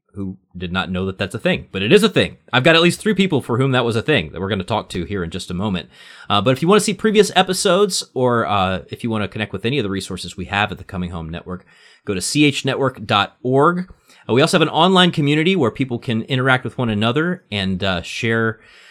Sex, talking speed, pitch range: male, 265 wpm, 95-130 Hz